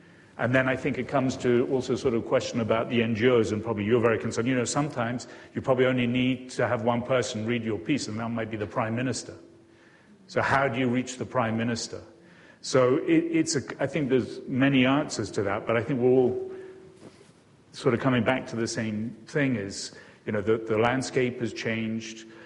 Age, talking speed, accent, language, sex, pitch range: 40-59, 215 wpm, British, English, male, 110-135 Hz